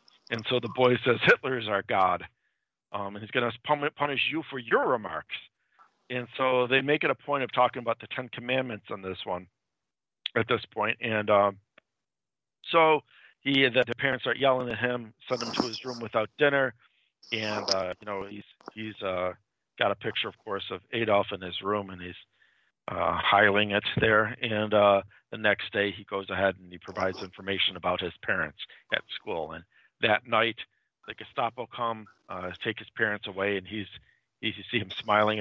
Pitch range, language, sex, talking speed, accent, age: 100-125 Hz, English, male, 190 wpm, American, 50-69